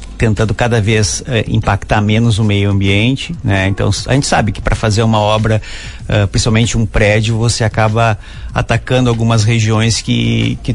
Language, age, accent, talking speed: Portuguese, 50-69, Brazilian, 160 wpm